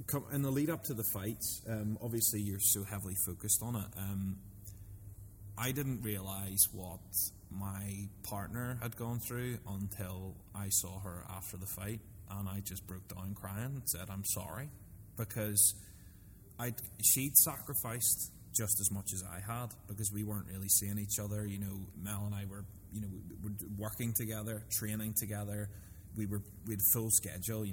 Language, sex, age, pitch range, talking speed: English, male, 20-39, 95-110 Hz, 170 wpm